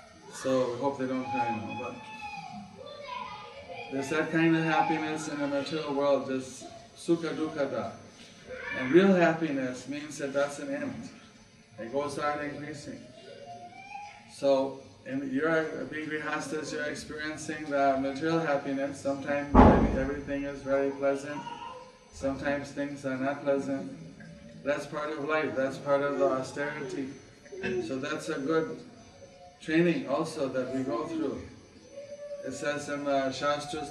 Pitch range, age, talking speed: 135-155 Hz, 20-39, 140 wpm